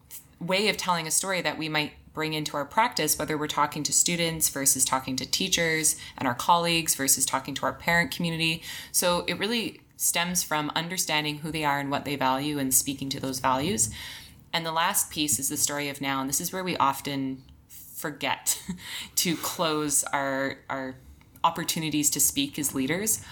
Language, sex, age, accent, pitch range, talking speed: English, female, 20-39, American, 135-170 Hz, 190 wpm